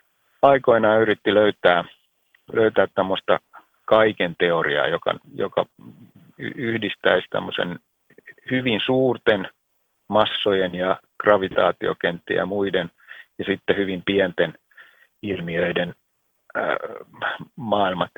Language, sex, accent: Finnish, male, native